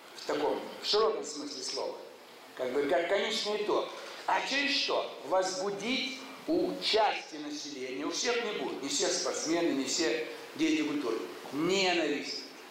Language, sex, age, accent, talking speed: Russian, male, 60-79, native, 140 wpm